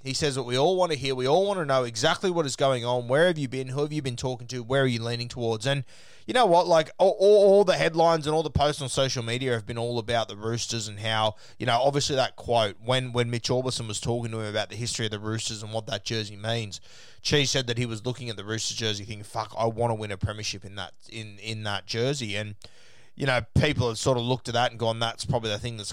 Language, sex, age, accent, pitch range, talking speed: English, male, 20-39, Australian, 110-130 Hz, 280 wpm